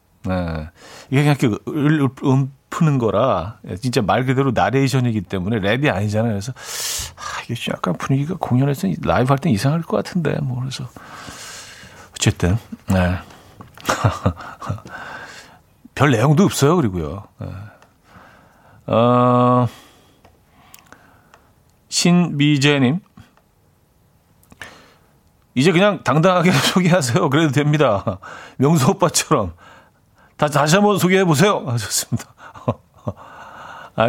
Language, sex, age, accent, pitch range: Korean, male, 40-59, native, 115-165 Hz